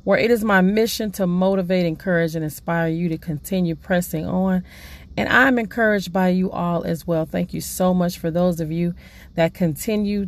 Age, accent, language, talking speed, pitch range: 40-59, American, English, 195 wpm, 165-195 Hz